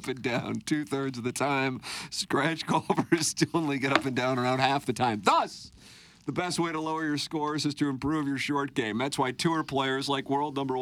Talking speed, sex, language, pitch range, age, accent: 220 wpm, male, English, 105-140 Hz, 50-69, American